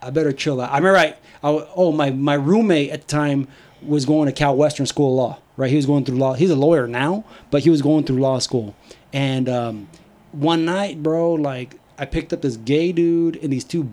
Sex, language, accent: male, English, American